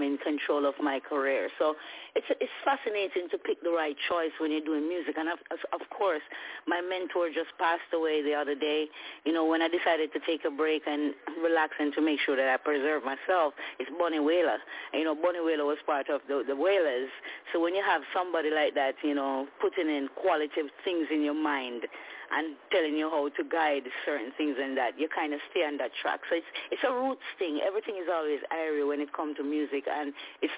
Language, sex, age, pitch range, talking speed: English, female, 30-49, 150-175 Hz, 220 wpm